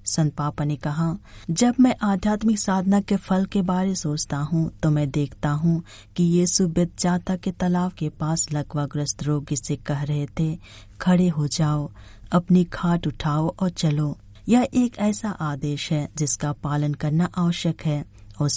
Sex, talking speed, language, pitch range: female, 165 wpm, Hindi, 150-180 Hz